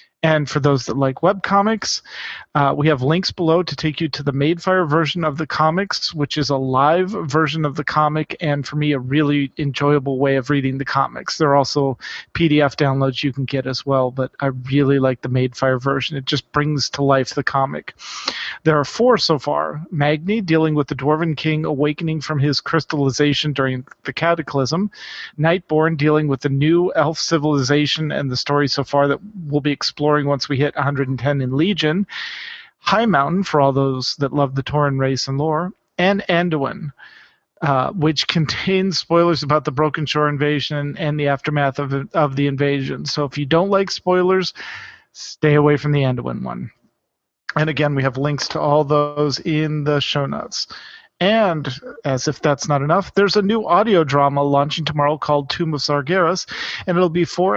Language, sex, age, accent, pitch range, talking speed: English, male, 40-59, American, 140-165 Hz, 185 wpm